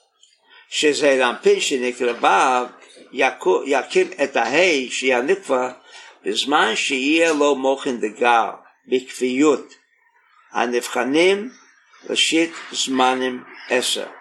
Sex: male